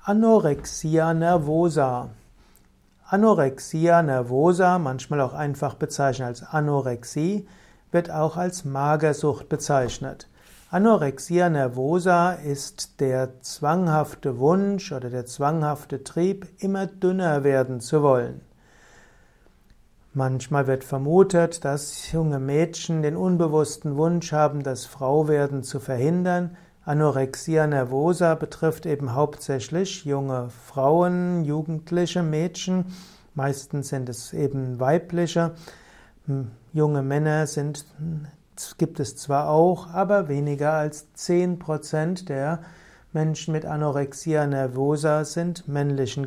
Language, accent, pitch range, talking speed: German, German, 140-170 Hz, 95 wpm